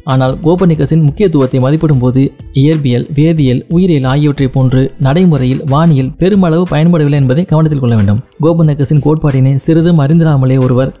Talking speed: 125 wpm